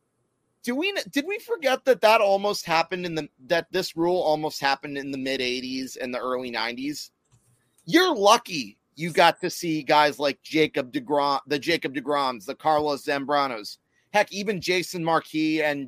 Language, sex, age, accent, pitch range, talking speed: English, male, 30-49, American, 145-210 Hz, 170 wpm